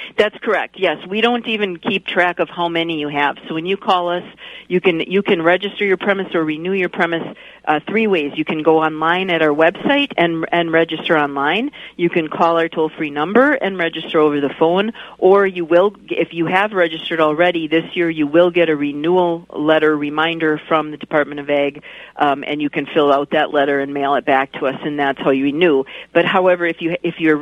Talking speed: 220 wpm